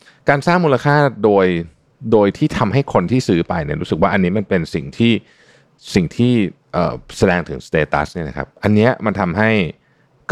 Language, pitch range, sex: Thai, 80-120 Hz, male